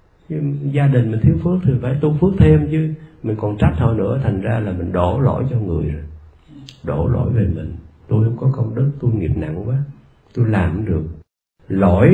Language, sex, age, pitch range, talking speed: Vietnamese, male, 50-69, 95-130 Hz, 210 wpm